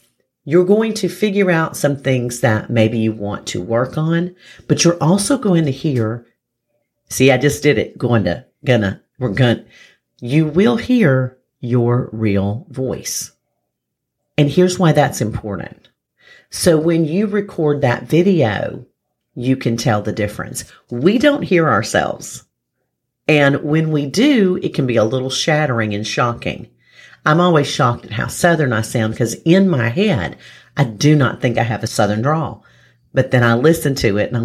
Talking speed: 170 wpm